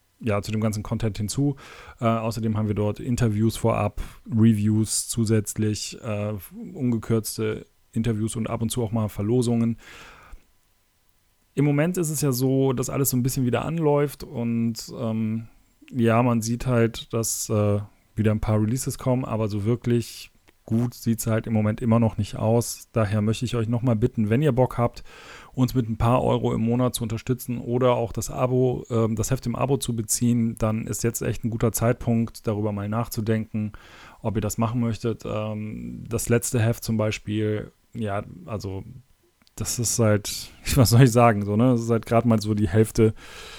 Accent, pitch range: German, 105-120 Hz